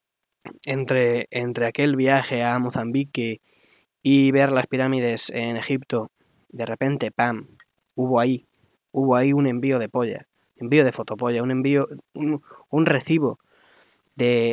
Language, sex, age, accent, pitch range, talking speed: Spanish, male, 20-39, Spanish, 120-150 Hz, 130 wpm